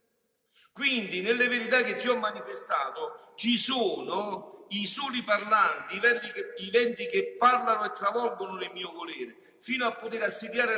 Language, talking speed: Italian, 150 wpm